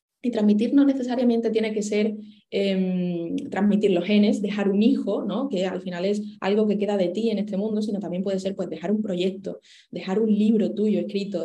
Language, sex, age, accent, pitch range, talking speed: Spanish, female, 20-39, Spanish, 185-215 Hz, 210 wpm